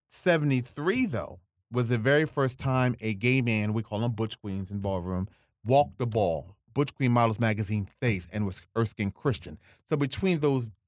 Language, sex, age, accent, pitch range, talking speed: English, male, 30-49, American, 105-125 Hz, 180 wpm